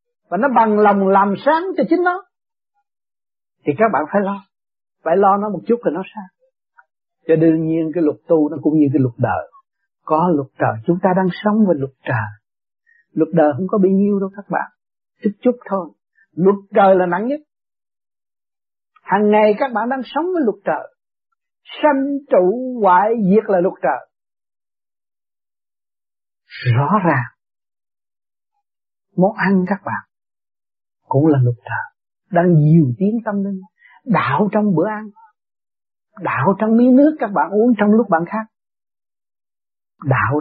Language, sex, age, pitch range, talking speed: Vietnamese, male, 60-79, 170-235 Hz, 160 wpm